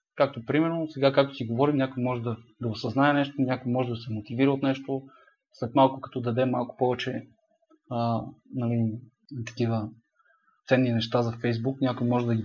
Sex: male